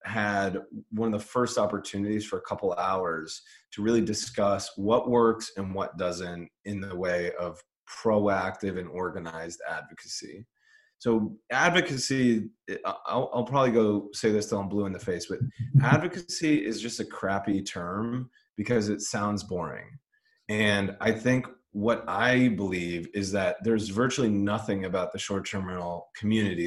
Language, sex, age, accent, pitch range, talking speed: English, male, 30-49, American, 95-115 Hz, 150 wpm